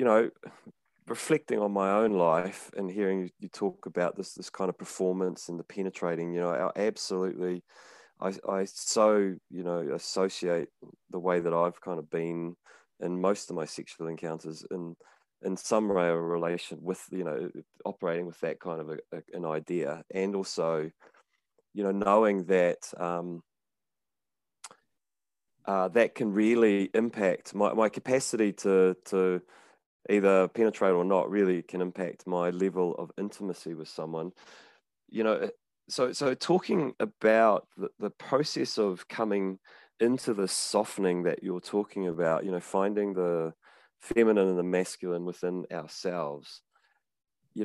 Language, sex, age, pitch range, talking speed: English, male, 30-49, 85-105 Hz, 150 wpm